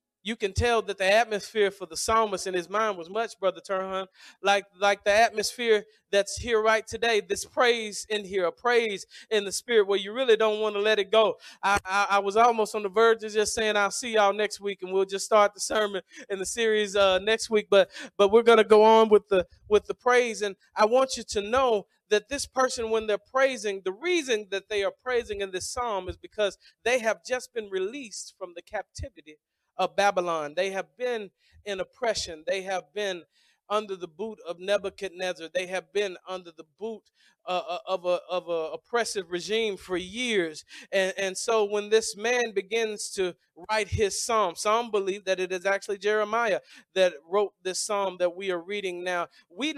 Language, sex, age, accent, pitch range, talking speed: English, male, 40-59, American, 190-230 Hz, 205 wpm